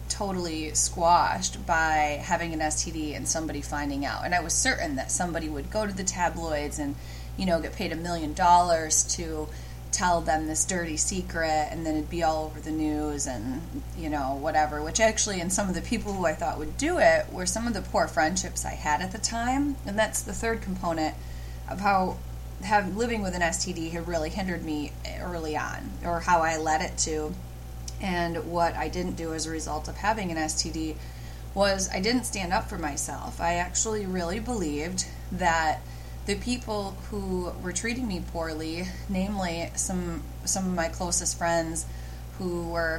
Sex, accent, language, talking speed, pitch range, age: female, American, English, 185 wpm, 150-180 Hz, 30-49